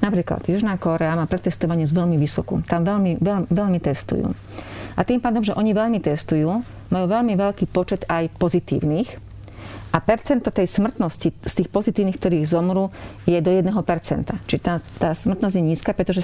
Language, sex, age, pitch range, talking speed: Slovak, female, 40-59, 160-195 Hz, 165 wpm